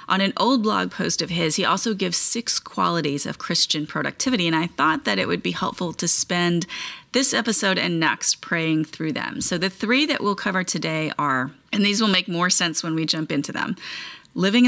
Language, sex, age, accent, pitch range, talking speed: English, female, 30-49, American, 165-215 Hz, 215 wpm